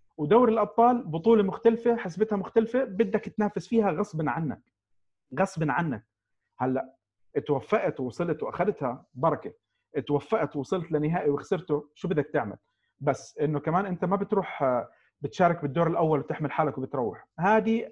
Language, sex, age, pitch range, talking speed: Arabic, male, 40-59, 135-205 Hz, 125 wpm